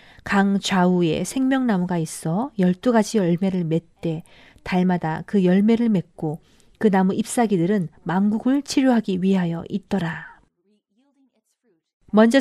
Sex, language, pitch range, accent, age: female, Korean, 180-245 Hz, native, 40-59